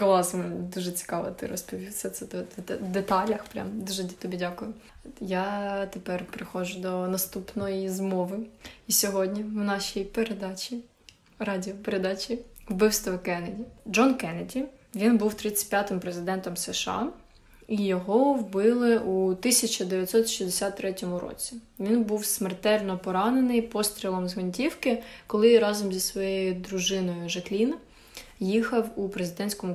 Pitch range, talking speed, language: 185-225 Hz, 115 wpm, Ukrainian